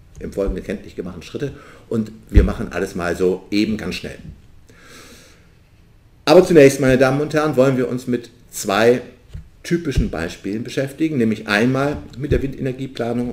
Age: 50-69